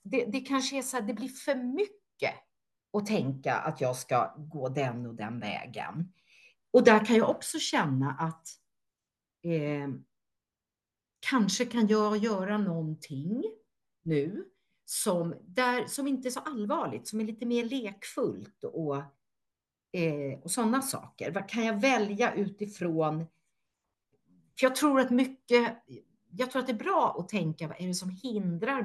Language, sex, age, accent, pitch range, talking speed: Swedish, female, 50-69, native, 155-240 Hz, 155 wpm